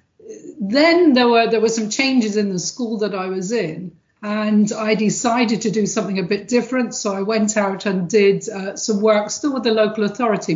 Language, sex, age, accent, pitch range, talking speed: English, female, 40-59, British, 200-235 Hz, 210 wpm